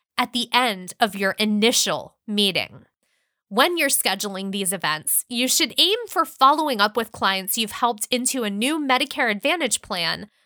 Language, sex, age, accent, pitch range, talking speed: English, female, 20-39, American, 205-275 Hz, 160 wpm